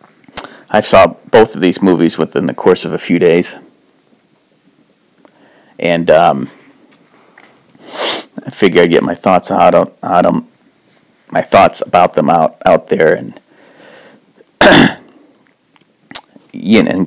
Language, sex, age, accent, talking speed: English, male, 50-69, American, 115 wpm